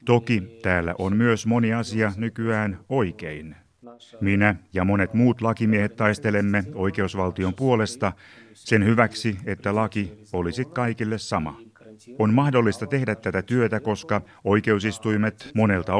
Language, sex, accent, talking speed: Finnish, male, native, 115 wpm